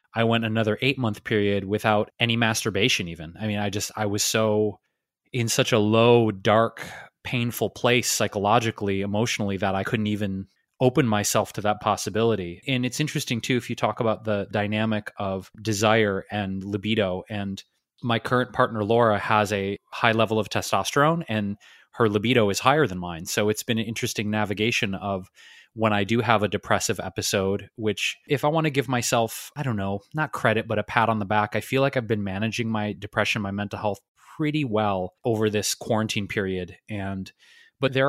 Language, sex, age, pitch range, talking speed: English, male, 20-39, 105-120 Hz, 185 wpm